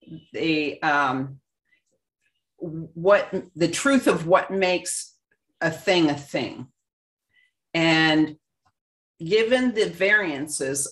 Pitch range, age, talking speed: 160-225 Hz, 40-59, 90 wpm